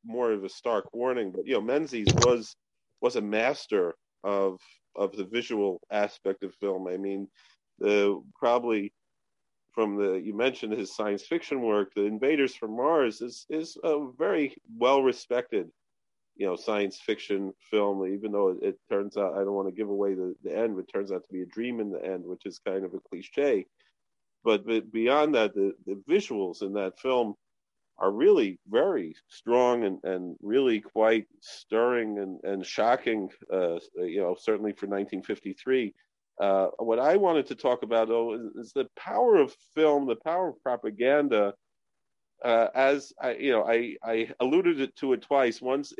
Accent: American